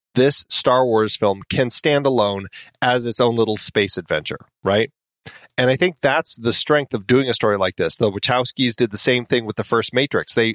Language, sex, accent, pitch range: English, male, American, 115-140 Hz